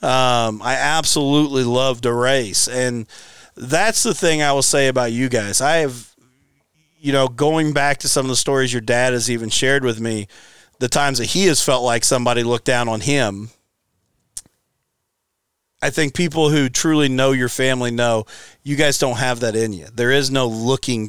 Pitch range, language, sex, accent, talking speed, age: 115-140 Hz, English, male, American, 190 wpm, 40-59